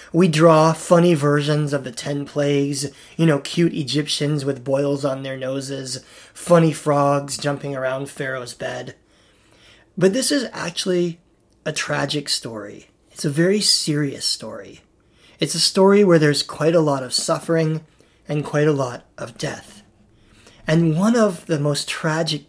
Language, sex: English, male